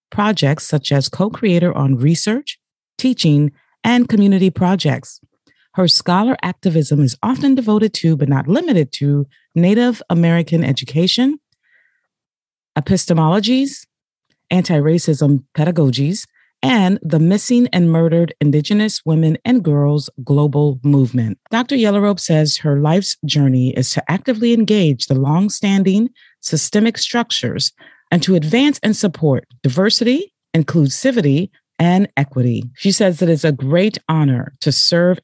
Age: 40-59